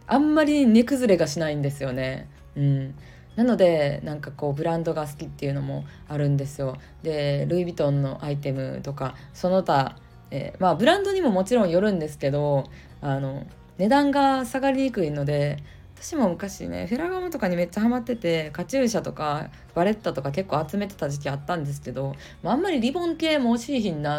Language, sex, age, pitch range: Japanese, female, 20-39, 140-195 Hz